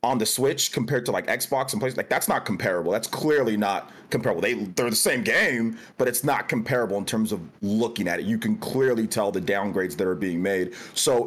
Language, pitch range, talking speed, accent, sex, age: English, 95-115 Hz, 230 wpm, American, male, 30-49